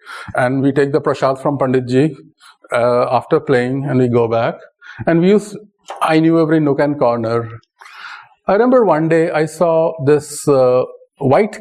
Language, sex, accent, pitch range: English, male, Indian, 135-175 Hz